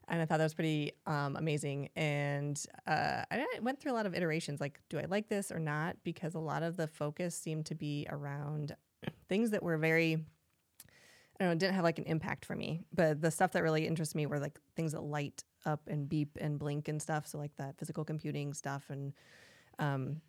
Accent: American